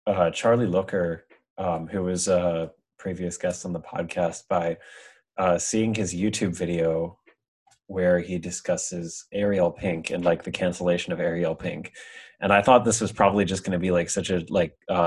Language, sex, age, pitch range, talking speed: English, male, 20-39, 85-95 Hz, 175 wpm